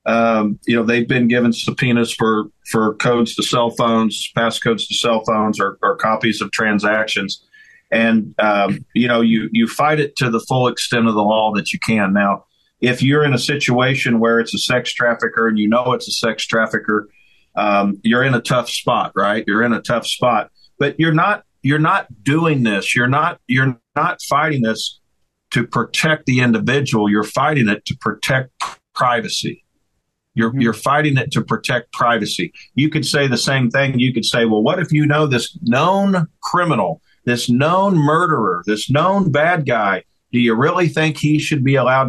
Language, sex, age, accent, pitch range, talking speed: English, male, 50-69, American, 110-145 Hz, 190 wpm